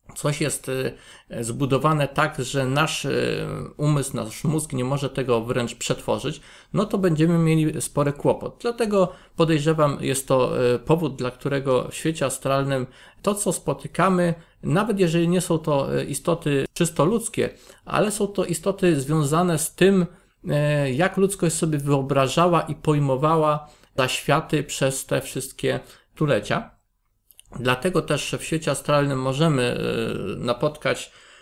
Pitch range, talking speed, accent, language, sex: 140-175 Hz, 125 wpm, native, Polish, male